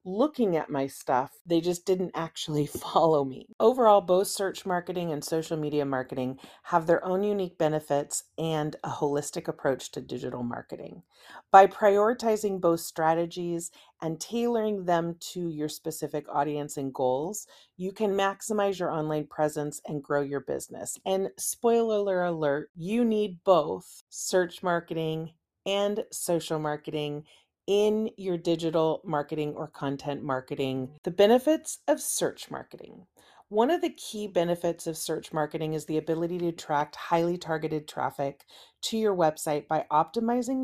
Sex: female